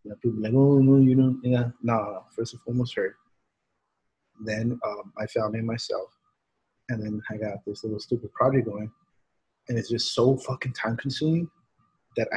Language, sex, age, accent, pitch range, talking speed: English, male, 30-49, American, 110-125 Hz, 205 wpm